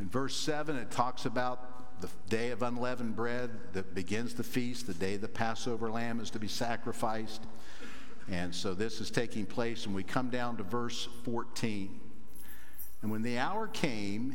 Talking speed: 175 wpm